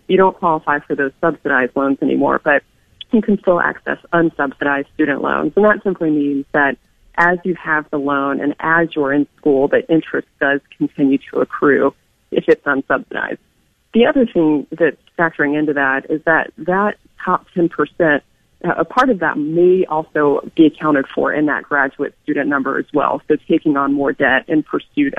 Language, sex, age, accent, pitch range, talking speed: English, female, 30-49, American, 145-175 Hz, 180 wpm